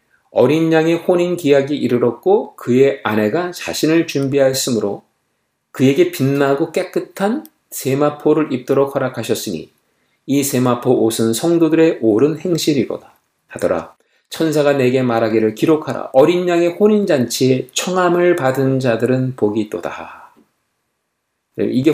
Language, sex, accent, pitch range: Korean, male, native, 125-180 Hz